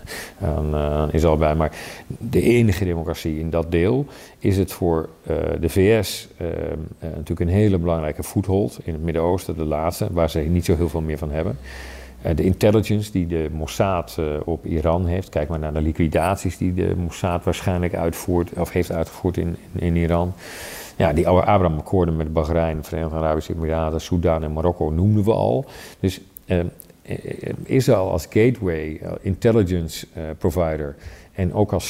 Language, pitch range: Dutch, 80-95 Hz